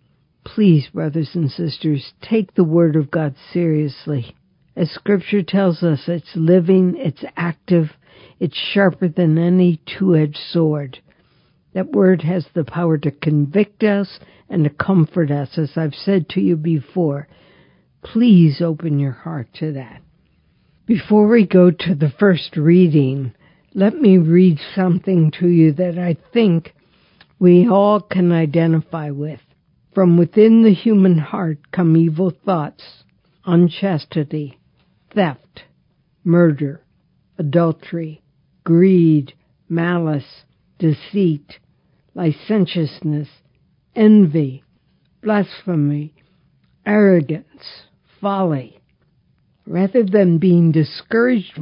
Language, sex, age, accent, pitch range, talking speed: English, female, 60-79, American, 155-190 Hz, 110 wpm